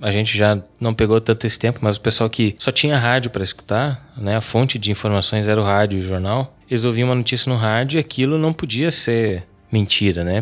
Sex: male